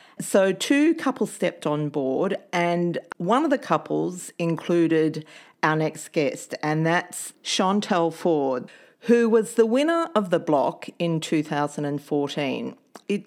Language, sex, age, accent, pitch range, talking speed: English, female, 40-59, Australian, 155-215 Hz, 130 wpm